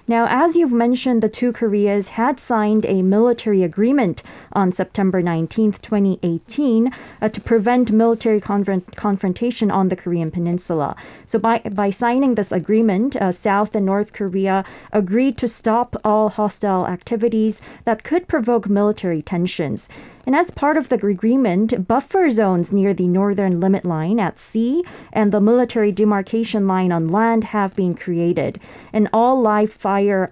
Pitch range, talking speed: 190-230 Hz, 155 wpm